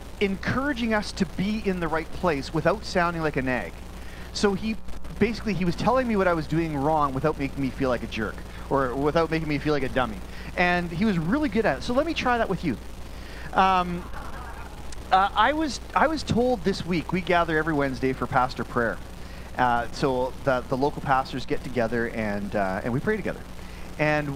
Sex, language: male, English